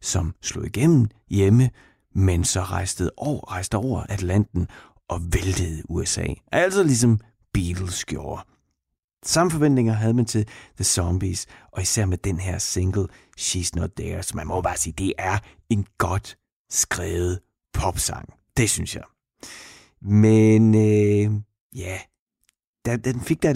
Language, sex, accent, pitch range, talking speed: Danish, male, native, 90-115 Hz, 140 wpm